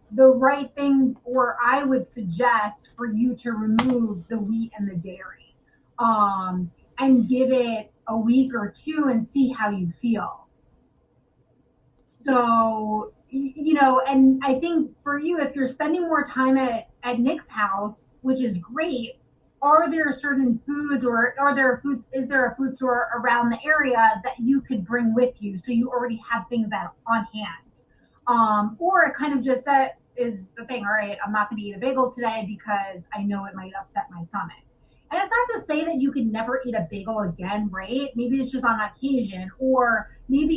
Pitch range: 215-265 Hz